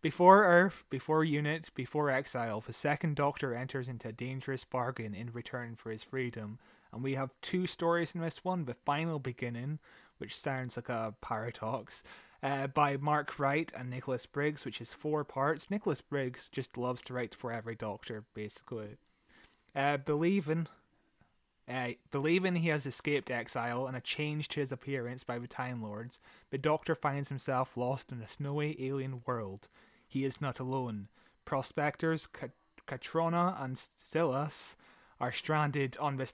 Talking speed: 155 wpm